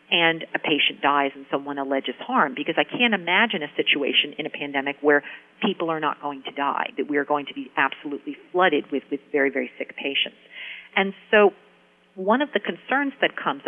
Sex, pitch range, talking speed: female, 150-210 Hz, 200 wpm